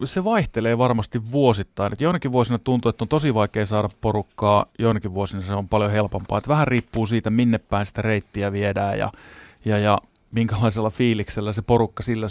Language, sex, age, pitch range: Finnish, male, 30-49, 105-120 Hz